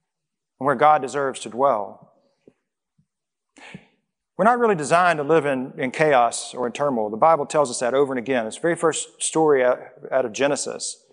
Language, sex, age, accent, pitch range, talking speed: English, male, 40-59, American, 130-165 Hz, 185 wpm